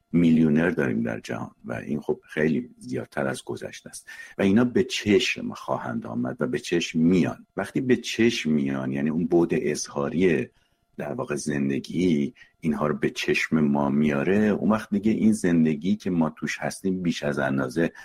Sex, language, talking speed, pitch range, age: male, Persian, 170 wpm, 75-105 Hz, 50-69